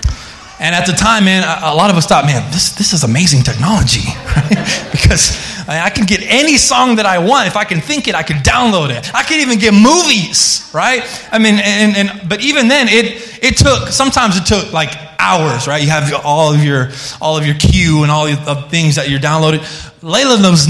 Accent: American